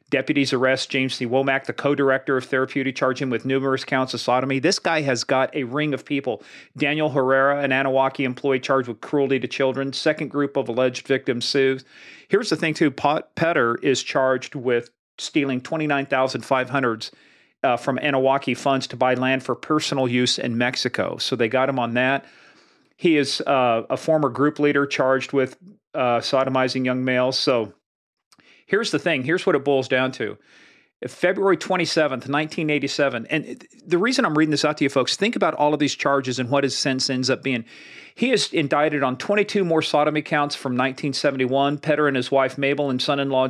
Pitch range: 130-150 Hz